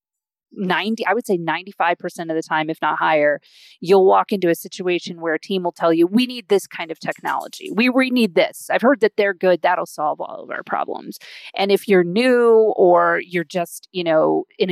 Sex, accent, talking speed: female, American, 215 wpm